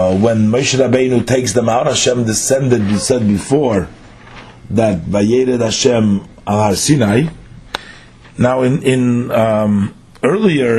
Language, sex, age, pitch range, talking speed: English, male, 40-59, 105-130 Hz, 105 wpm